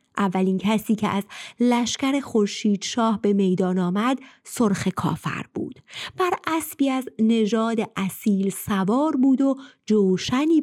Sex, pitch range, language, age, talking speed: female, 195-270 Hz, Persian, 30-49, 120 wpm